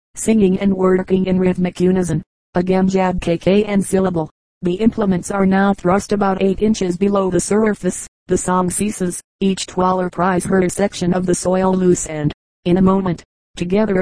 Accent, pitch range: American, 180-195 Hz